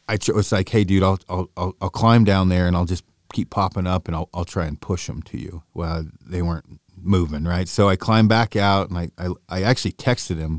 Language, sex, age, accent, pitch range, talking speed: English, male, 40-59, American, 85-100 Hz, 245 wpm